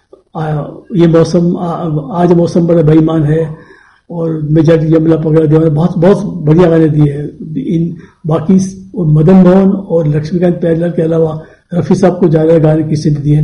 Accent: native